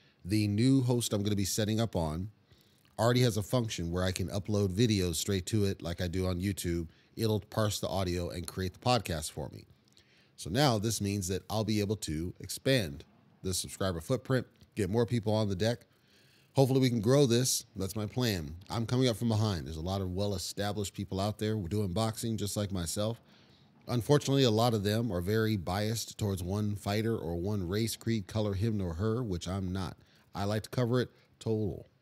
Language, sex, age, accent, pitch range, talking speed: English, male, 30-49, American, 95-115 Hz, 210 wpm